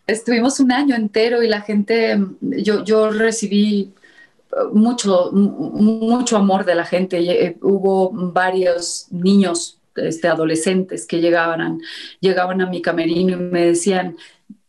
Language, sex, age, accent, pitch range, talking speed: Spanish, female, 30-49, Mexican, 185-220 Hz, 130 wpm